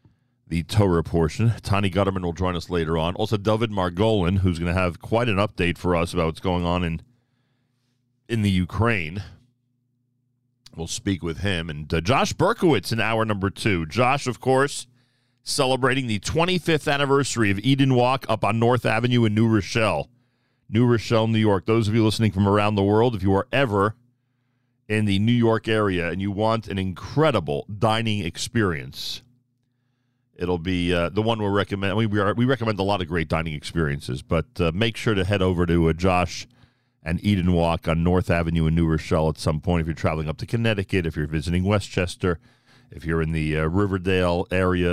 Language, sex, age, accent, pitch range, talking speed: English, male, 40-59, American, 85-120 Hz, 195 wpm